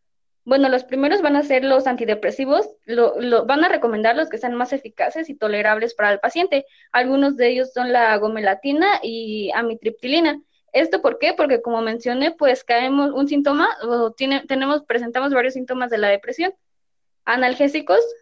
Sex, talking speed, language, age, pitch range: female, 170 wpm, Spanish, 20-39, 230-280 Hz